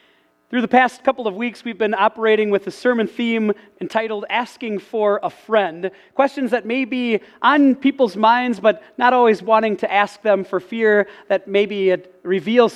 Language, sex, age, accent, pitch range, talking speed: English, male, 40-59, American, 185-240 Hz, 180 wpm